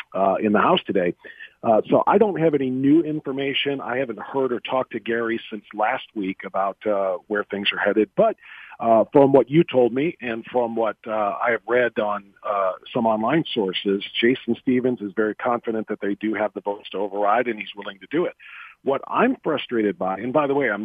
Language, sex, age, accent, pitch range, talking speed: English, male, 50-69, American, 105-130 Hz, 220 wpm